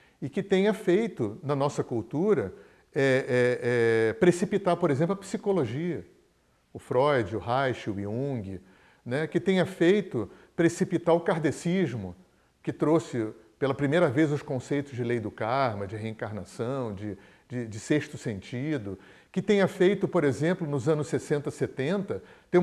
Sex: male